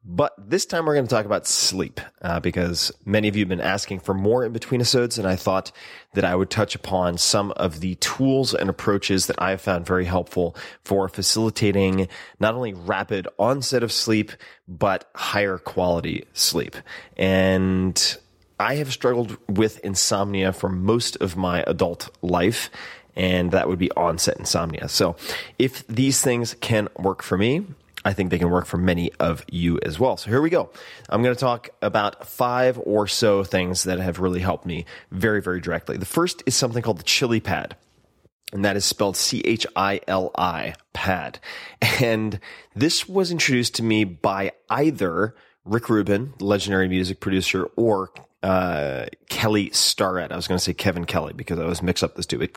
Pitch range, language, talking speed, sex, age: 90-115 Hz, English, 180 wpm, male, 30-49